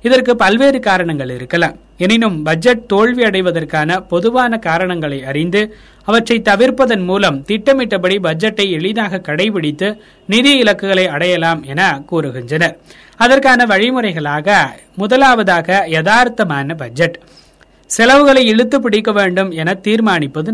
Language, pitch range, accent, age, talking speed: Tamil, 170-230 Hz, native, 30-49, 100 wpm